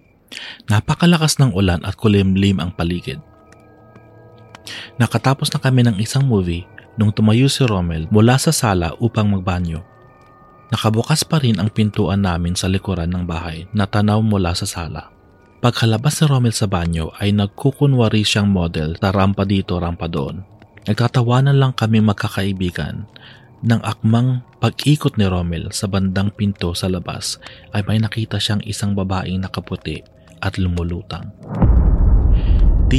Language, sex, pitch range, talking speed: Filipino, male, 95-115 Hz, 135 wpm